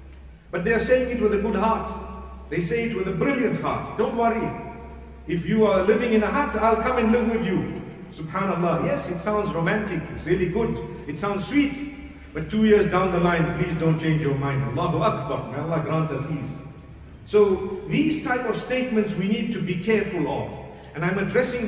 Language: English